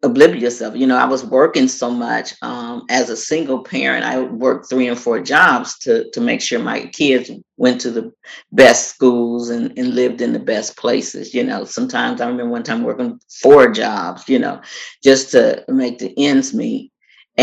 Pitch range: 120-145 Hz